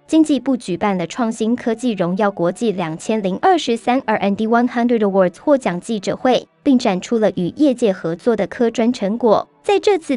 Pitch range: 205-265 Hz